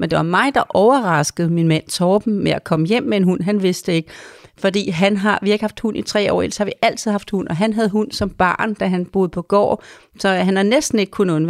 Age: 40-59